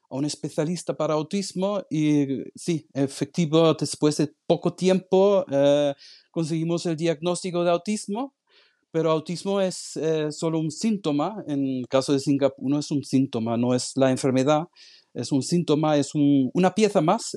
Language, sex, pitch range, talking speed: Spanish, male, 145-185 Hz, 160 wpm